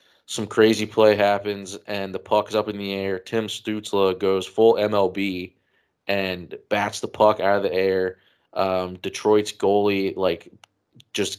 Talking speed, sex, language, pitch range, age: 160 wpm, male, English, 95-105 Hz, 20-39